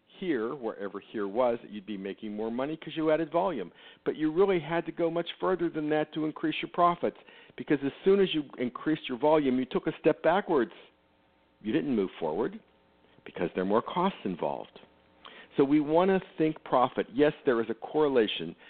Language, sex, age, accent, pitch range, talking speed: English, male, 50-69, American, 100-155 Hz, 195 wpm